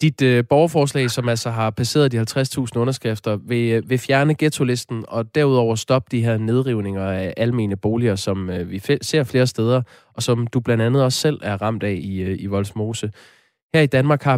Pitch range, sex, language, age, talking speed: 105-130 Hz, male, Danish, 20-39, 200 wpm